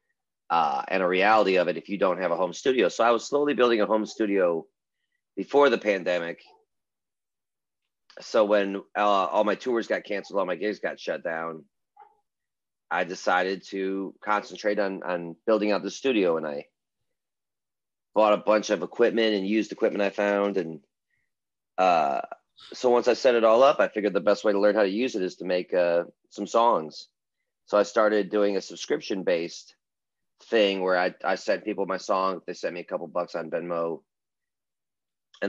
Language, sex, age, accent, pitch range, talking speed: English, male, 30-49, American, 90-110 Hz, 185 wpm